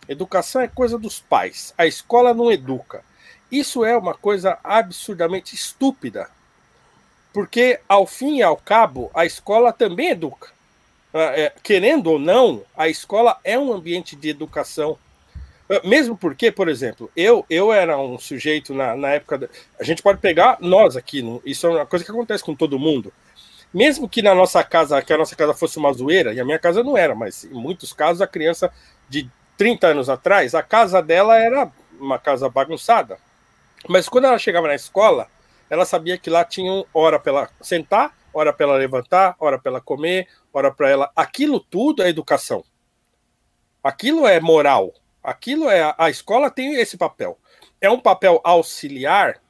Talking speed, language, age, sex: 170 wpm, Portuguese, 50-69, male